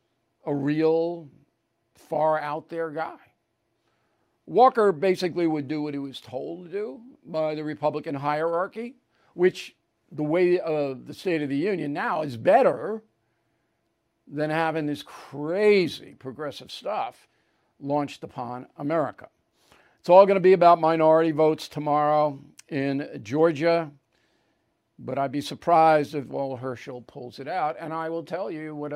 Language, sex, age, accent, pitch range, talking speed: English, male, 50-69, American, 145-170 Hz, 135 wpm